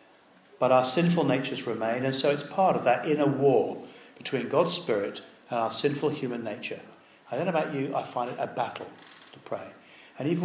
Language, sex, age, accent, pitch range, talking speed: English, male, 40-59, British, 120-180 Hz, 200 wpm